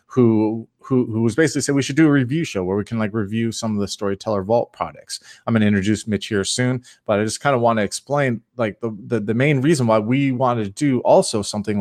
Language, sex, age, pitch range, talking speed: English, male, 30-49, 100-125 Hz, 255 wpm